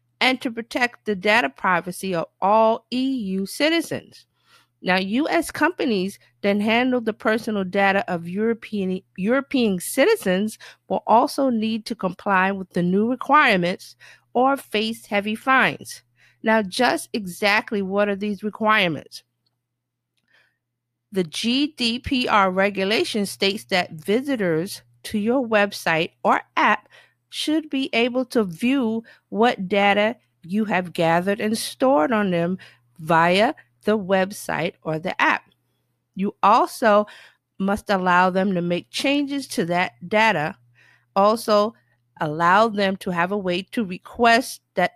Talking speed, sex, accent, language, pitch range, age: 125 wpm, female, American, English, 175-225 Hz, 50-69